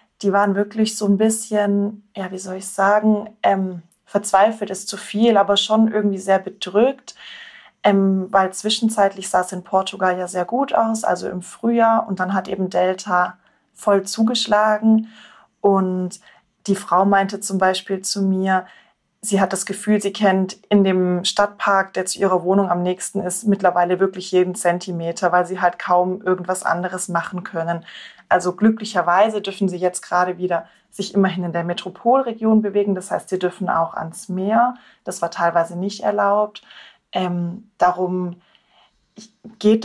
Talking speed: 160 wpm